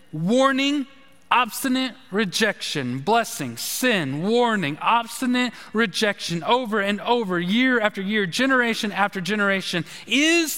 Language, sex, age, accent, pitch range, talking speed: English, male, 30-49, American, 190-255 Hz, 100 wpm